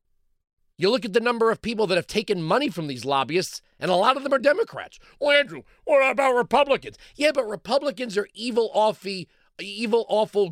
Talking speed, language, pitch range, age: 195 wpm, English, 135-220 Hz, 40-59